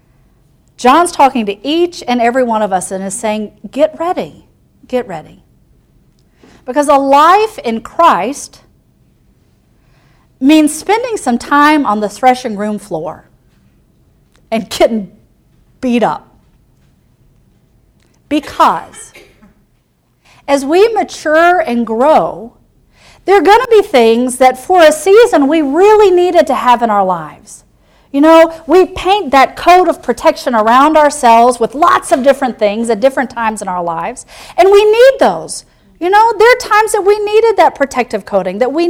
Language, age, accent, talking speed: English, 40-59, American, 150 wpm